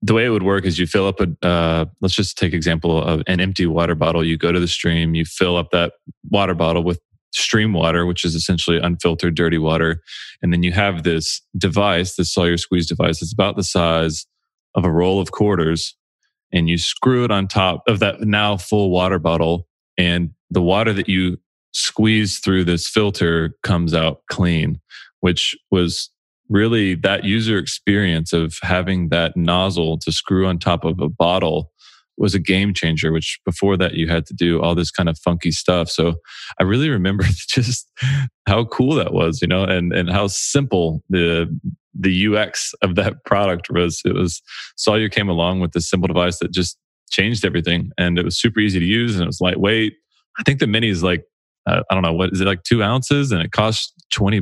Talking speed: 200 wpm